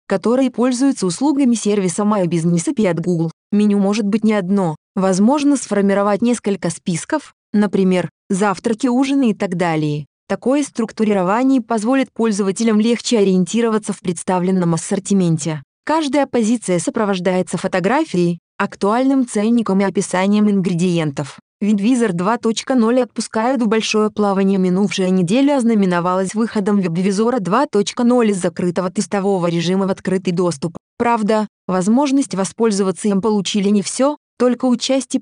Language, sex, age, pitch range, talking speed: Russian, female, 20-39, 185-230 Hz, 120 wpm